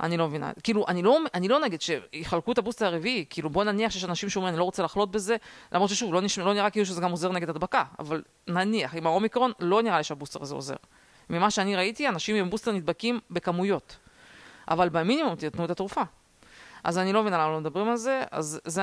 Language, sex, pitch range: Hebrew, female, 160-200 Hz